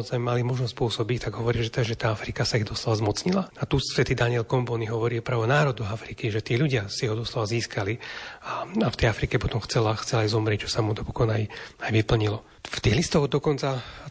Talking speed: 200 wpm